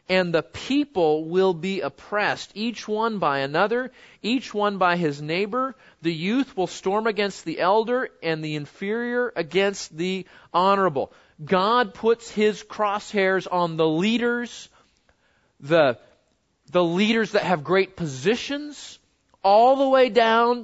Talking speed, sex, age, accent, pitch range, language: 135 wpm, male, 40-59, American, 165-215 Hz, English